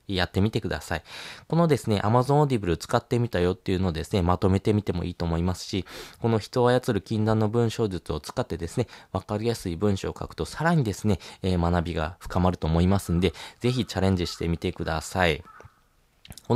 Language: Japanese